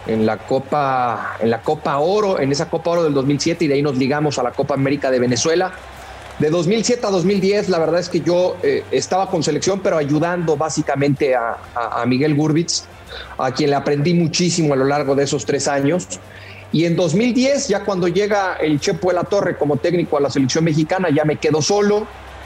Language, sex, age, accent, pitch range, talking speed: English, male, 40-59, Mexican, 140-185 Hz, 210 wpm